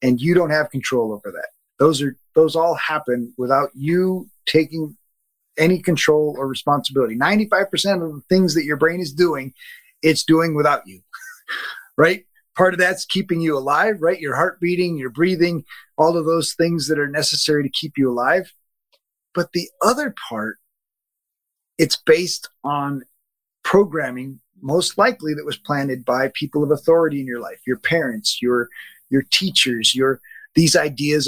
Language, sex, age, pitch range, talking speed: English, male, 30-49, 145-190 Hz, 160 wpm